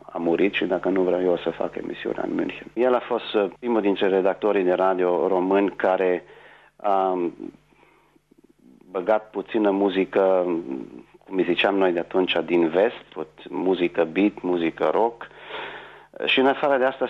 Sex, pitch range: male, 90-120 Hz